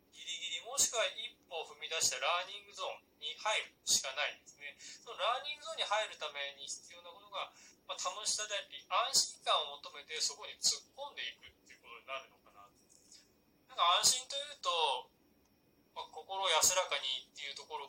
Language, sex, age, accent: Japanese, male, 20-39, native